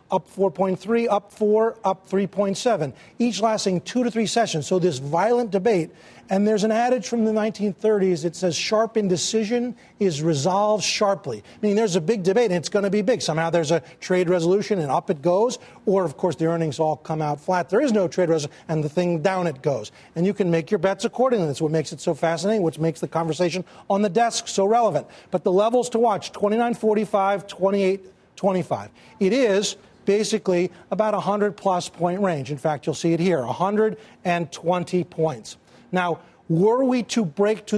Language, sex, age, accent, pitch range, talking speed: English, male, 40-59, American, 170-215 Hz, 195 wpm